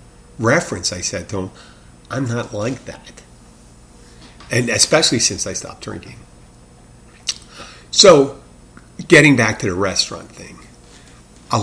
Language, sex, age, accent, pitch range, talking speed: English, male, 50-69, American, 90-120 Hz, 120 wpm